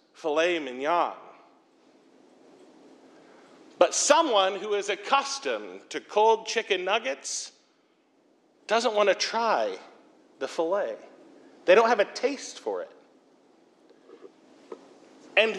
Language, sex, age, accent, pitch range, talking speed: English, male, 40-59, American, 230-345 Hz, 95 wpm